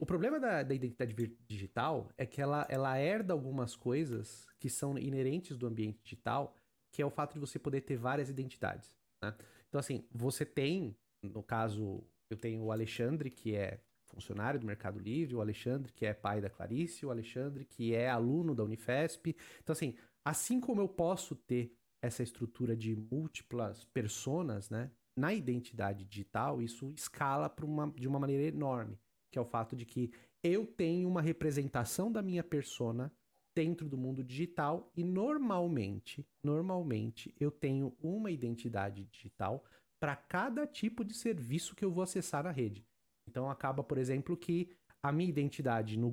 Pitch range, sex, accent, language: 115-155 Hz, male, Brazilian, Portuguese